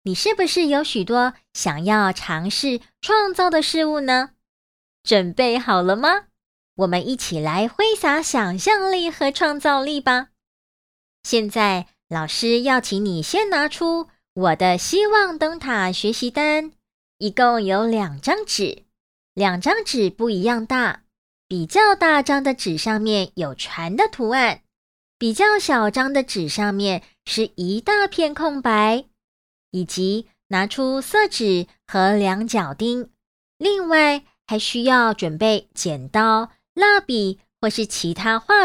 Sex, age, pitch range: male, 20-39, 195-300 Hz